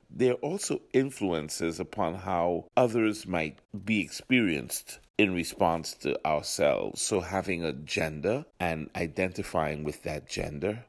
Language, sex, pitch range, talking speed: English, male, 80-95 Hz, 125 wpm